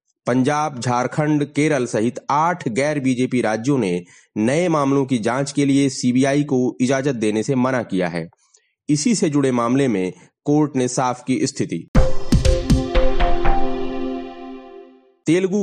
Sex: male